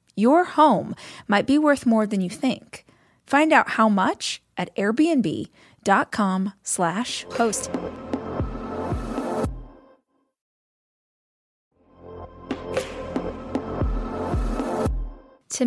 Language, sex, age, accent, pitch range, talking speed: English, female, 20-39, American, 175-235 Hz, 70 wpm